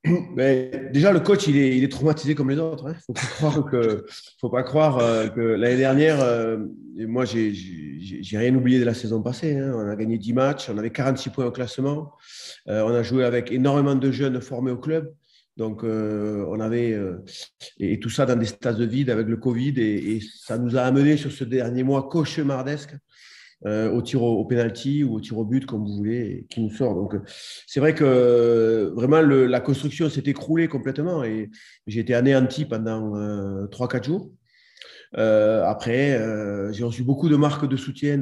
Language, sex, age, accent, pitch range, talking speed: French, male, 30-49, French, 110-140 Hz, 195 wpm